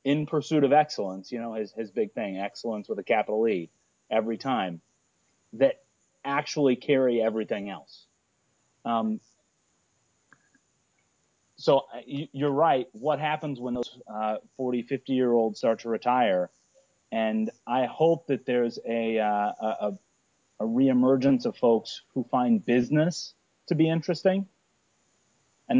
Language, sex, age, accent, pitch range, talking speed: English, male, 30-49, American, 110-140 Hz, 125 wpm